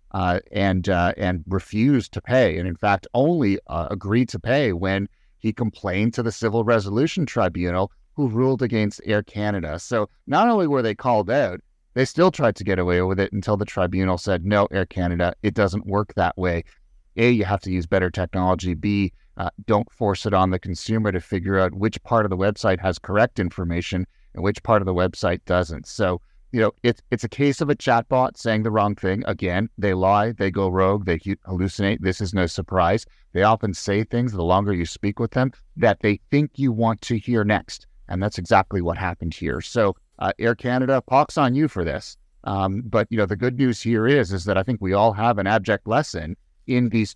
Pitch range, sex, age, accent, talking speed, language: 95-115 Hz, male, 30-49, American, 215 wpm, English